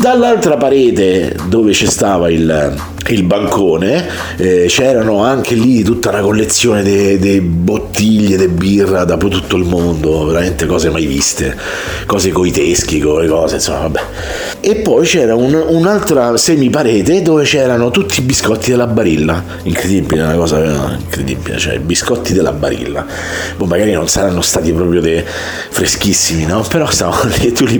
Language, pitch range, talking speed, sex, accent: Italian, 85-120 Hz, 155 wpm, male, native